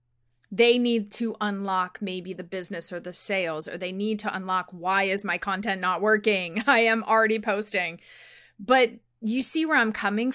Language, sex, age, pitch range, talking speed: English, female, 30-49, 195-235 Hz, 180 wpm